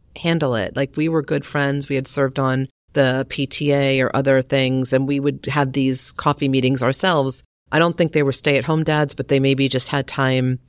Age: 40-59